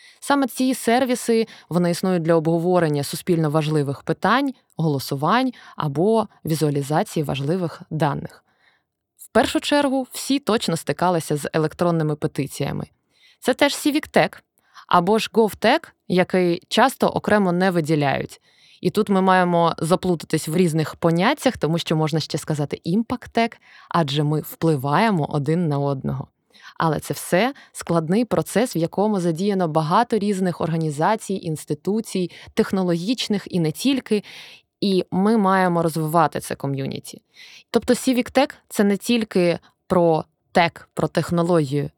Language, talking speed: Ukrainian, 125 wpm